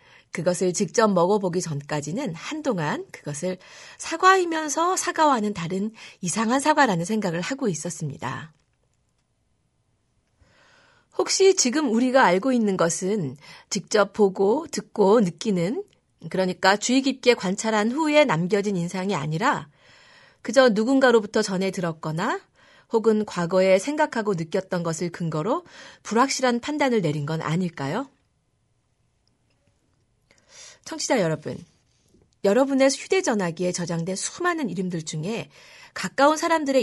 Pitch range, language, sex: 170-260 Hz, Korean, female